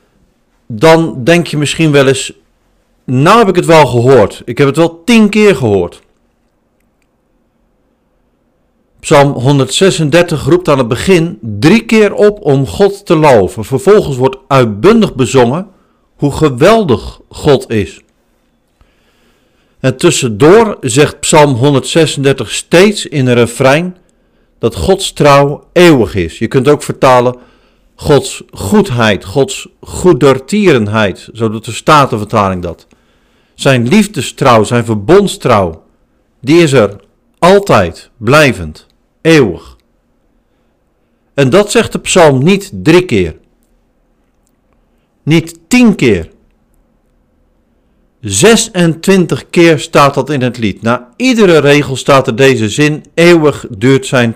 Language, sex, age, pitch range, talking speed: Dutch, male, 50-69, 125-175 Hz, 115 wpm